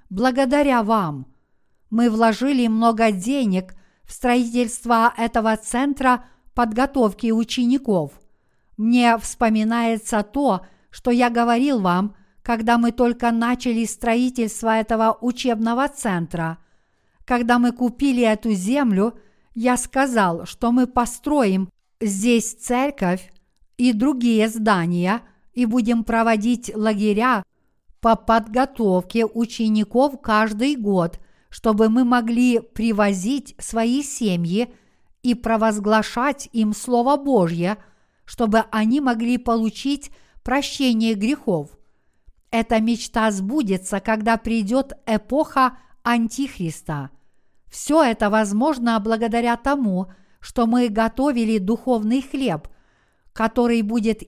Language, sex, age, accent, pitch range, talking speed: Russian, female, 50-69, native, 215-245 Hz, 95 wpm